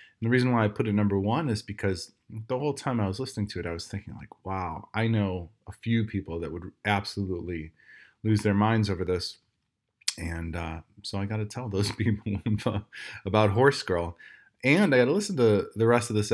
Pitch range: 90-115 Hz